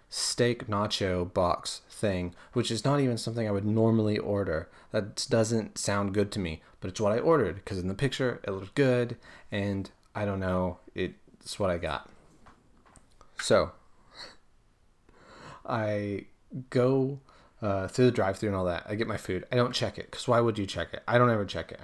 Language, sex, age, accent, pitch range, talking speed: English, male, 30-49, American, 95-115 Hz, 185 wpm